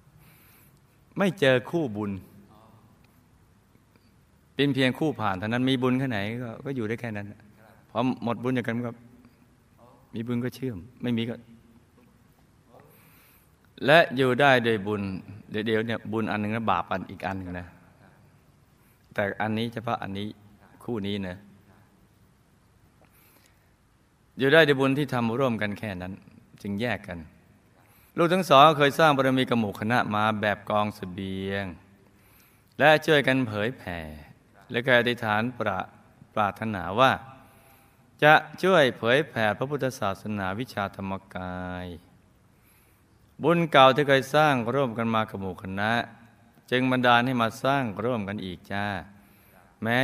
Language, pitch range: Thai, 100-125 Hz